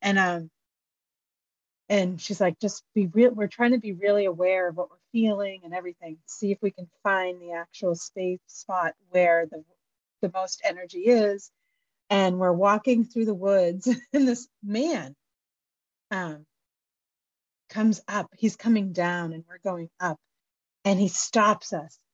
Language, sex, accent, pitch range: English, female, American, 180-230 Hz